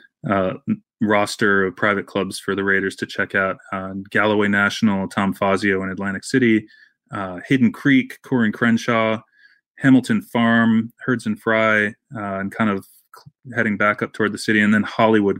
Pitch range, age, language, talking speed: 100-120 Hz, 20-39, English, 165 wpm